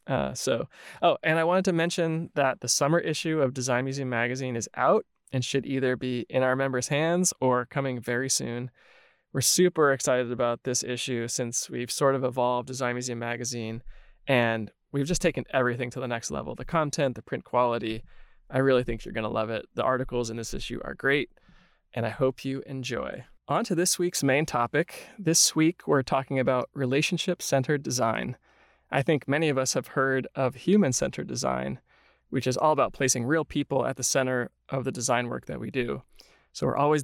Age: 20-39